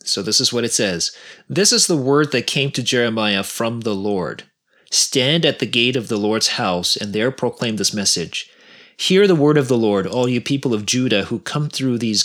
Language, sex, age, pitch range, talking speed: English, male, 30-49, 110-150 Hz, 220 wpm